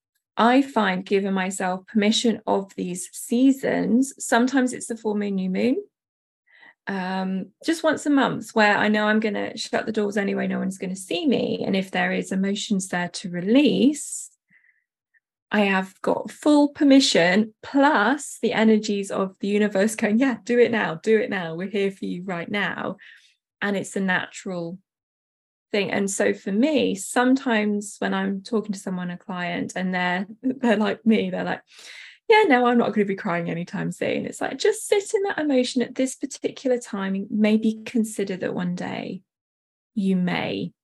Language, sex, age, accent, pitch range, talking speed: English, female, 20-39, British, 190-235 Hz, 180 wpm